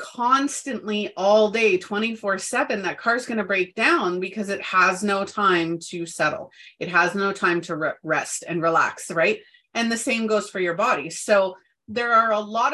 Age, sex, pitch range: 30-49, female, 175-230 Hz